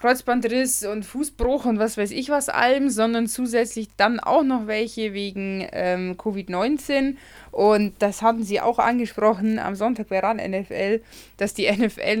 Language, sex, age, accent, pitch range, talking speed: German, female, 20-39, German, 195-240 Hz, 155 wpm